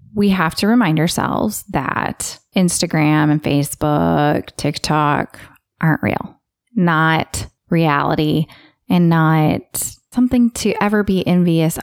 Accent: American